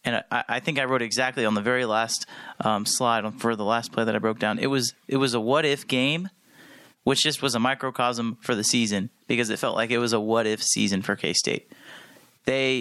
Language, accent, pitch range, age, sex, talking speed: English, American, 110-135 Hz, 30-49, male, 220 wpm